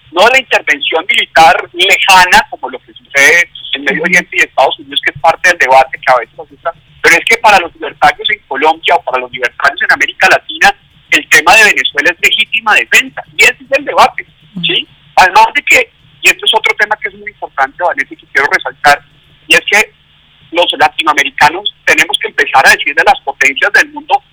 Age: 40-59